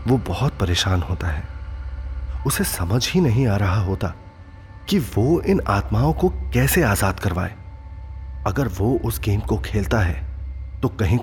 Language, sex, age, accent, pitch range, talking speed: Hindi, male, 30-49, native, 85-100 Hz, 155 wpm